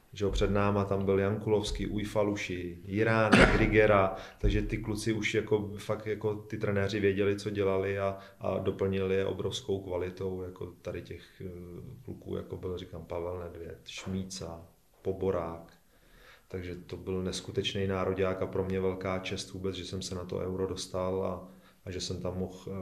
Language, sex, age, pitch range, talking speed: Czech, male, 30-49, 95-100 Hz, 165 wpm